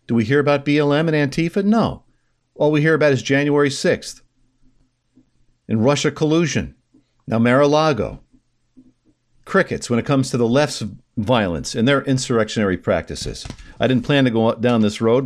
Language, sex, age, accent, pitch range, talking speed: English, male, 50-69, American, 110-140 Hz, 155 wpm